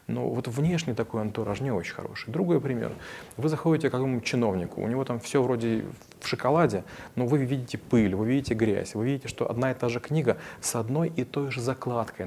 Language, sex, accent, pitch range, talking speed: Russian, male, native, 110-135 Hz, 210 wpm